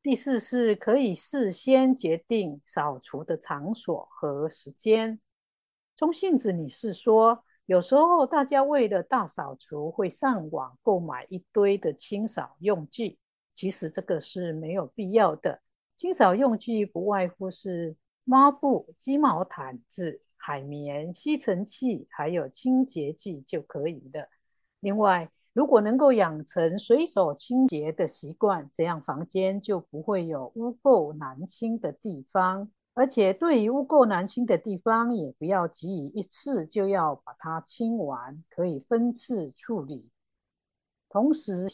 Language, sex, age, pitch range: Chinese, female, 50-69, 165-240 Hz